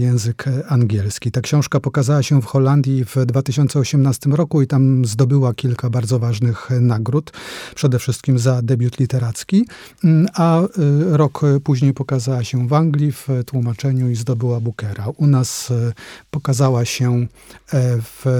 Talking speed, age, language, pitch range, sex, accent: 130 wpm, 30-49, Polish, 125-150 Hz, male, native